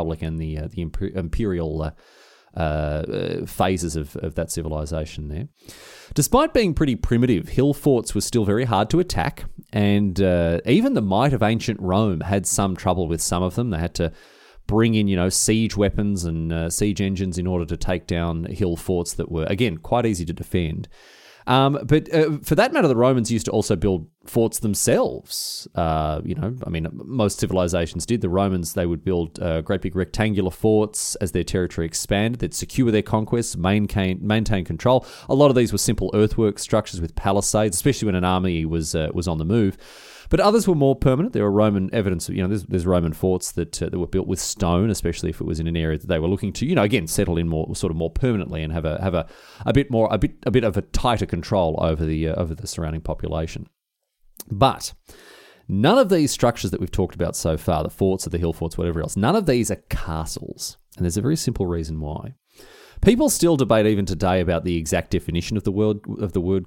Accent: Australian